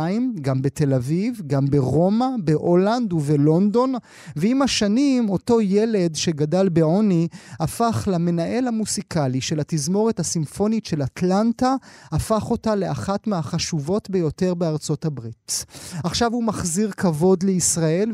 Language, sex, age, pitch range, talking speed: Hebrew, male, 30-49, 155-195 Hz, 110 wpm